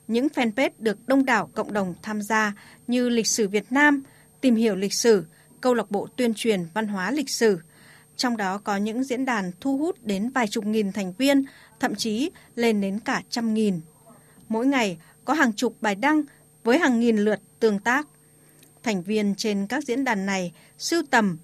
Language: Vietnamese